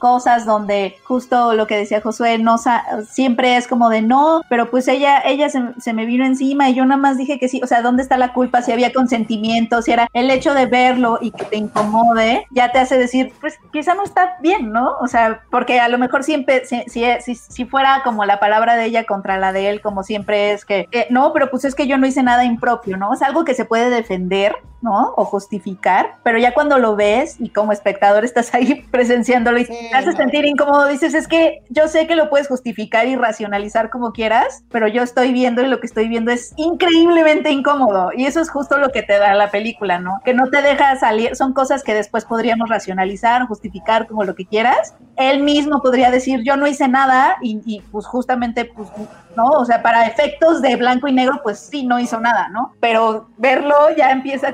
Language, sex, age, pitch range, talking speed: Spanish, female, 30-49, 225-270 Hz, 225 wpm